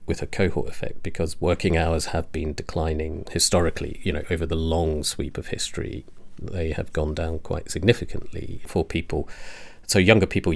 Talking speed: 170 wpm